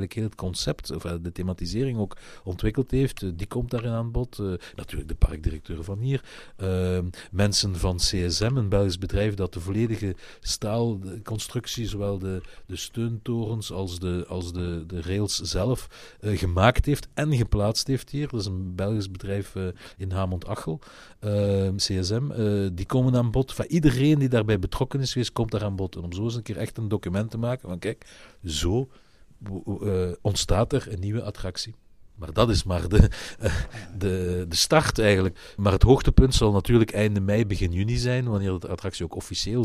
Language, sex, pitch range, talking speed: Dutch, male, 90-115 Hz, 175 wpm